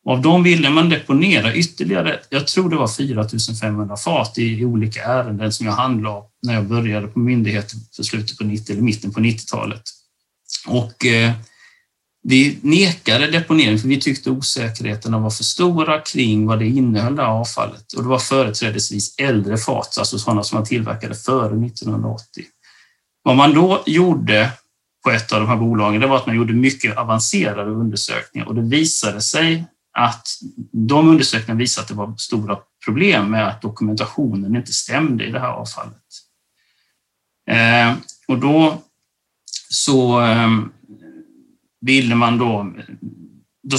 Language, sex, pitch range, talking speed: Swedish, male, 110-140 Hz, 150 wpm